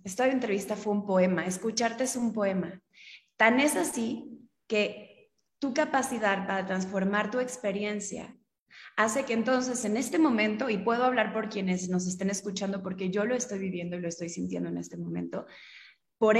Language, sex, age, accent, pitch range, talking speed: Spanish, female, 20-39, Mexican, 195-235 Hz, 170 wpm